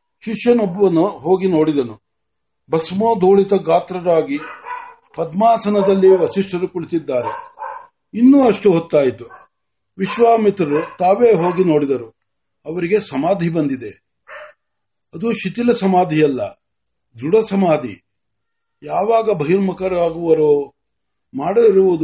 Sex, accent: male, native